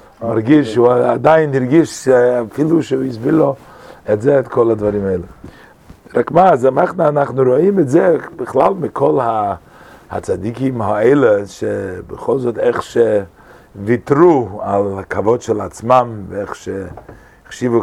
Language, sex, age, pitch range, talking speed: English, male, 50-69, 105-130 Hz, 120 wpm